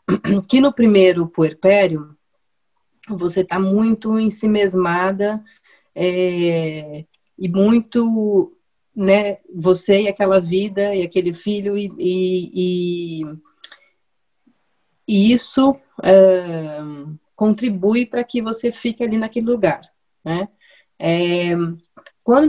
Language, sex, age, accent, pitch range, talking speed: Portuguese, female, 30-49, Brazilian, 170-210 Hz, 95 wpm